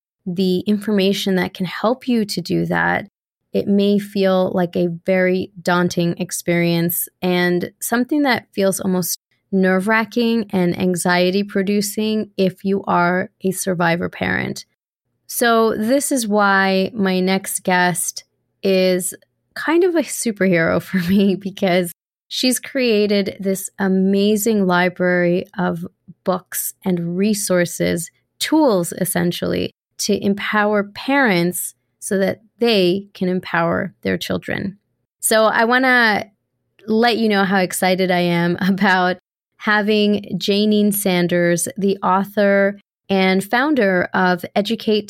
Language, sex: English, female